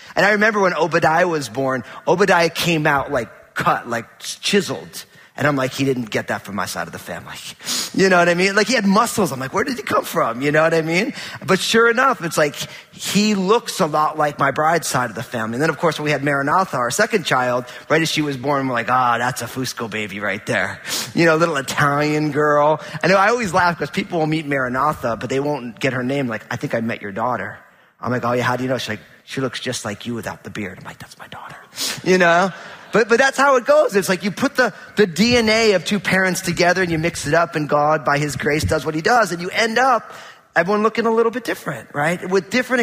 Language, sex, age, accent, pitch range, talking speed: English, male, 30-49, American, 145-210 Hz, 265 wpm